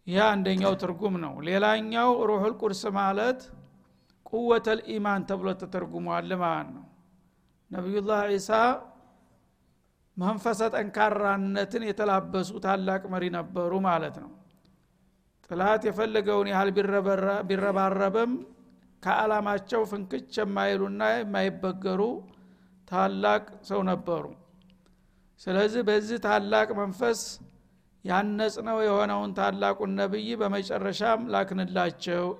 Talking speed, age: 90 wpm, 50-69